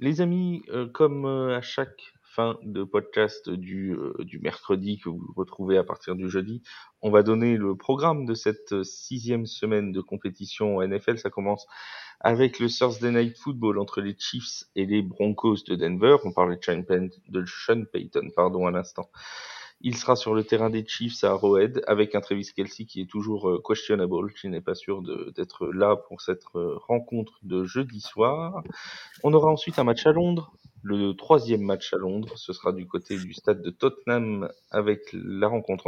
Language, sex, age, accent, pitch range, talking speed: French, male, 30-49, French, 95-120 Hz, 175 wpm